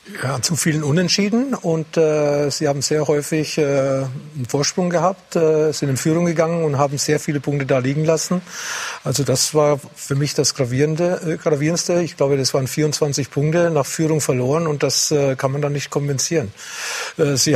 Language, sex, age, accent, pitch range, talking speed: German, male, 50-69, German, 140-160 Hz, 190 wpm